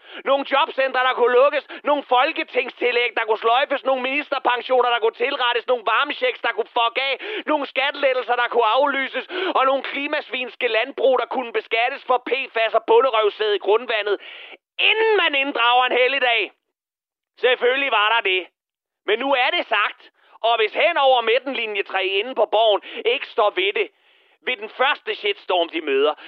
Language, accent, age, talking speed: Danish, native, 30-49, 160 wpm